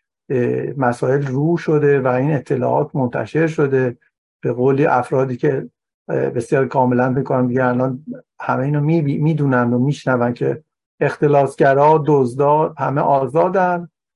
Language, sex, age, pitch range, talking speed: Persian, male, 50-69, 130-165 Hz, 120 wpm